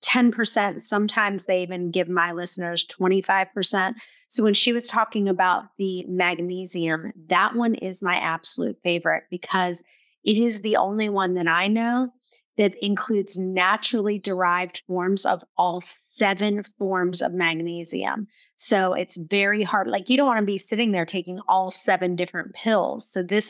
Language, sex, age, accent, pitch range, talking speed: English, female, 30-49, American, 180-220 Hz, 155 wpm